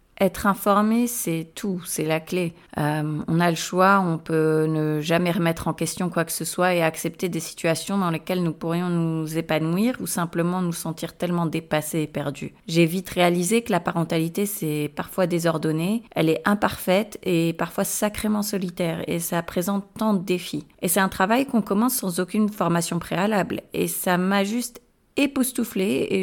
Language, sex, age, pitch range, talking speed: French, female, 30-49, 170-210 Hz, 180 wpm